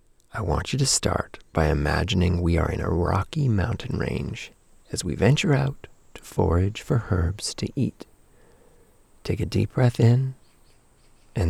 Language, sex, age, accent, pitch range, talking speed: English, male, 40-59, American, 85-130 Hz, 155 wpm